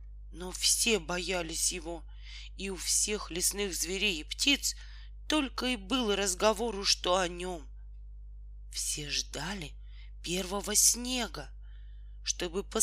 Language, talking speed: Russian, 110 wpm